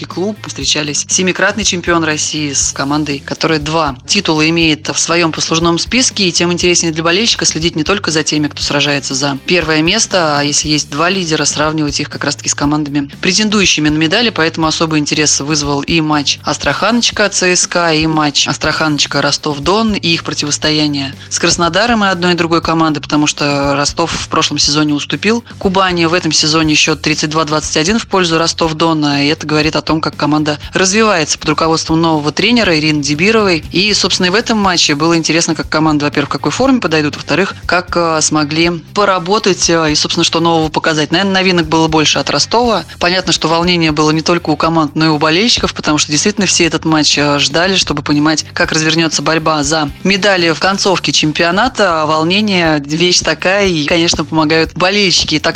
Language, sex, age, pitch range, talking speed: Russian, female, 20-39, 150-175 Hz, 180 wpm